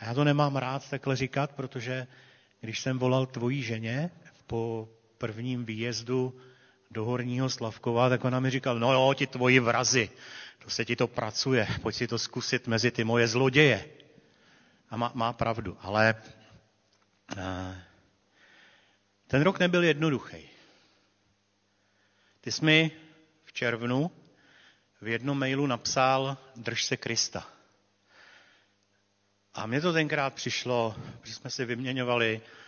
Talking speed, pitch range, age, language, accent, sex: 130 wpm, 105-130 Hz, 40-59, Czech, native, male